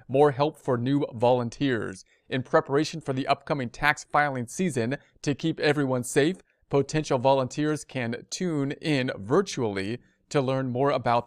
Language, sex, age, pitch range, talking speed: English, male, 40-59, 125-150 Hz, 145 wpm